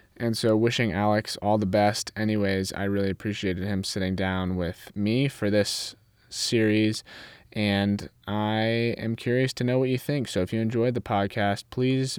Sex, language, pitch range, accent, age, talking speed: male, English, 95-120 Hz, American, 20-39, 170 wpm